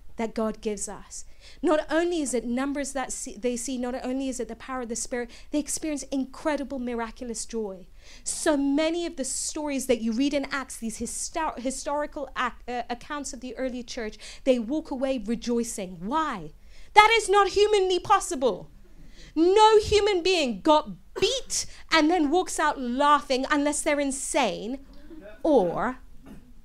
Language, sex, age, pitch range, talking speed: English, female, 30-49, 205-280 Hz, 155 wpm